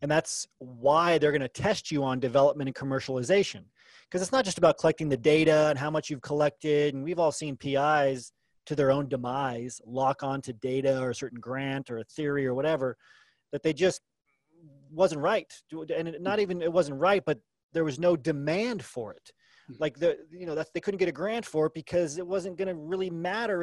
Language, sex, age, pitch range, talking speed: English, male, 30-49, 140-175 Hz, 205 wpm